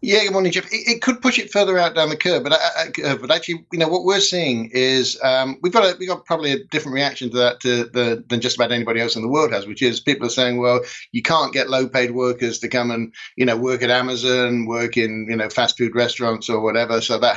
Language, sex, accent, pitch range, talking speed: English, male, British, 120-160 Hz, 275 wpm